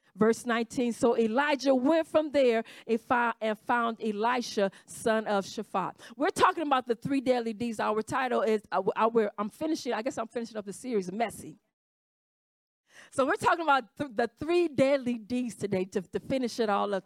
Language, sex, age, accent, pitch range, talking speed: English, female, 50-69, American, 225-310 Hz, 170 wpm